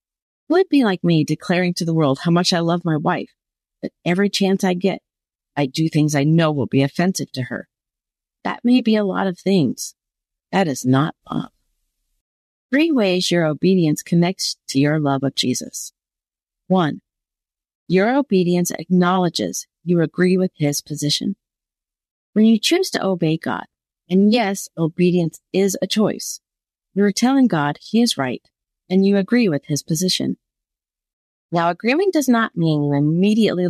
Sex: female